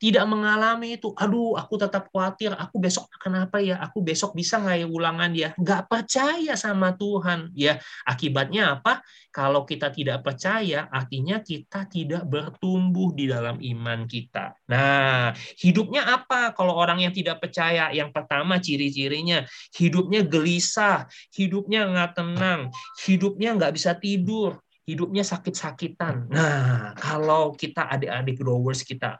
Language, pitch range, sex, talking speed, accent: Indonesian, 135-190 Hz, male, 135 wpm, native